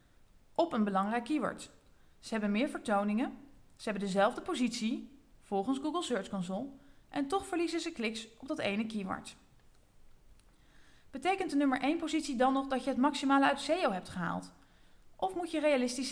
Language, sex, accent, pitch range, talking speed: Dutch, female, Dutch, 220-300 Hz, 165 wpm